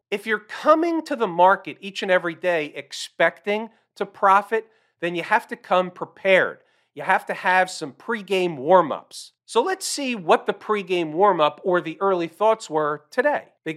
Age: 40-59